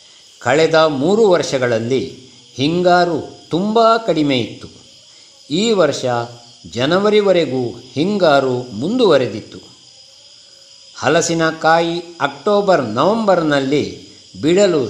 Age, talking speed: 60-79, 65 wpm